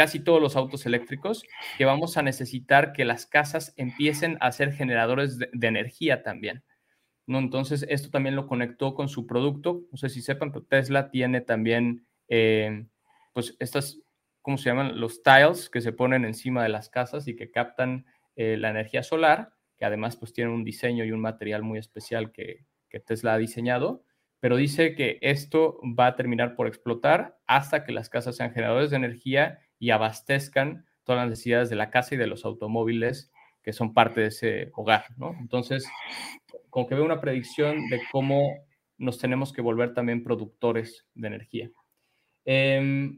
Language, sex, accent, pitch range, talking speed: Spanish, male, Mexican, 120-145 Hz, 175 wpm